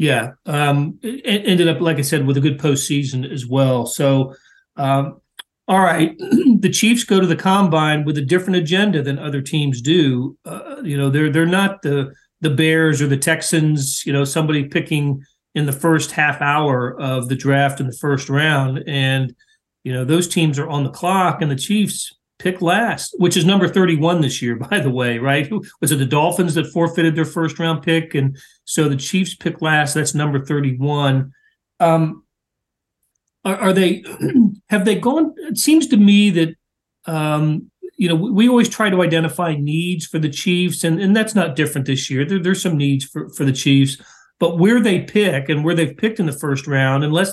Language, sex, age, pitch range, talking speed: English, male, 40-59, 140-185 Hz, 195 wpm